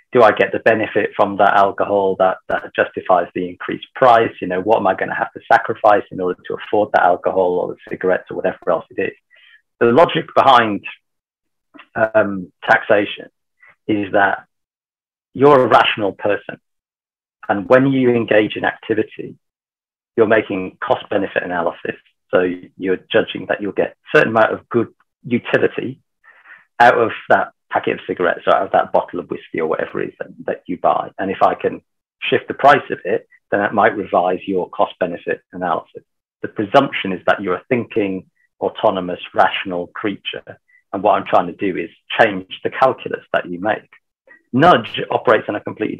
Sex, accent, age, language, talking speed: male, British, 40-59, English, 175 wpm